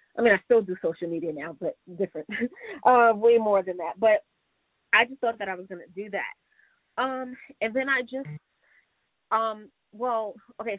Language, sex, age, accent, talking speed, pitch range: English, female, 30-49, American, 185 wpm, 175-225 Hz